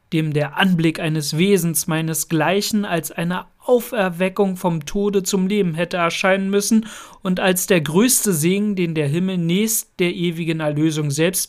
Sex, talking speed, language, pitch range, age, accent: male, 150 wpm, German, 160-205 Hz, 40-59, German